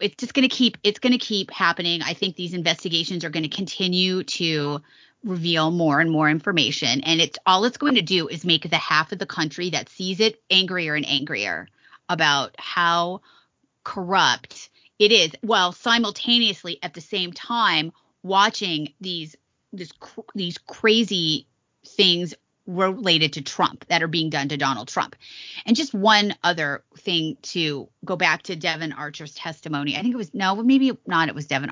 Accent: American